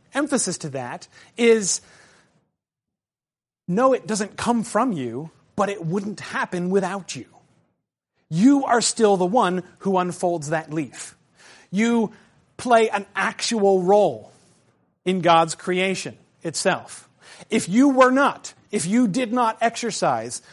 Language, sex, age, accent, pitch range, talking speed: English, male, 40-59, American, 155-210 Hz, 125 wpm